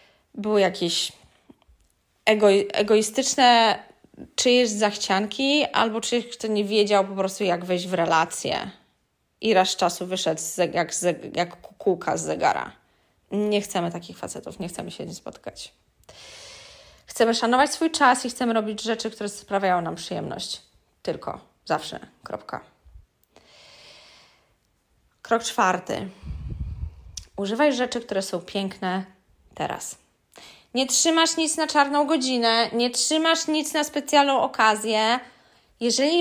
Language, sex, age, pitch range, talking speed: Polish, female, 20-39, 205-265 Hz, 125 wpm